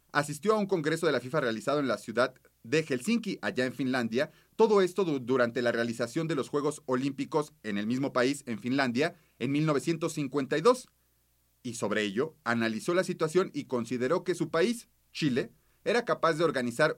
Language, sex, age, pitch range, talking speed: Spanish, male, 40-59, 120-165 Hz, 175 wpm